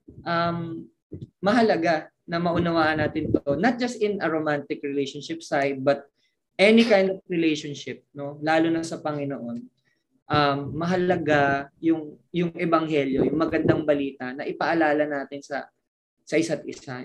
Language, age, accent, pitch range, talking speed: Filipino, 20-39, native, 145-185 Hz, 135 wpm